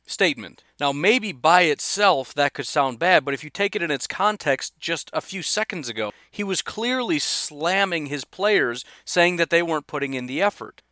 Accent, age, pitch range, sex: American, 40-59, 135-185 Hz, male